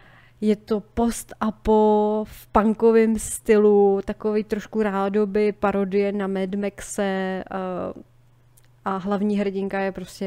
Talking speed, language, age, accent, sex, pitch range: 115 wpm, Czech, 20-39, native, female, 185-205 Hz